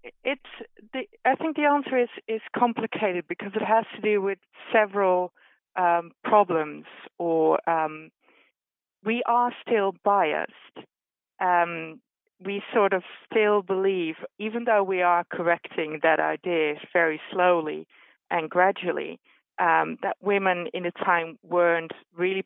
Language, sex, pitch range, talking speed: English, female, 165-210 Hz, 130 wpm